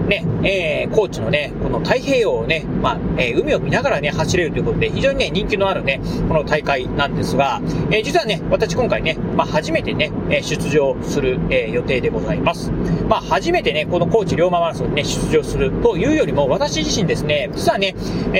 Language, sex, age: Japanese, male, 40-59